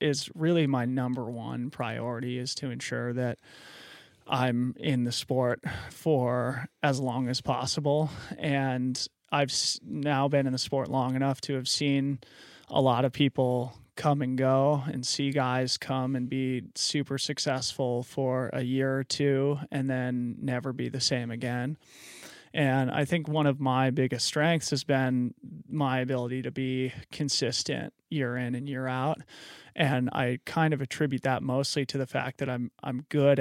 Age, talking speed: 20-39, 165 wpm